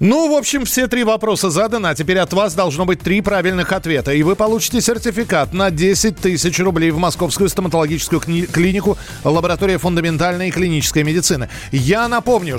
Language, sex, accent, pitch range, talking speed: Russian, male, native, 145-190 Hz, 160 wpm